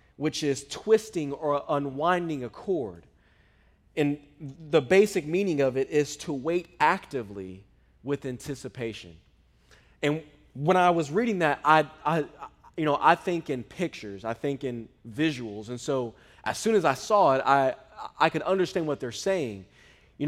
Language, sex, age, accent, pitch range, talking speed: English, male, 20-39, American, 130-170 Hz, 155 wpm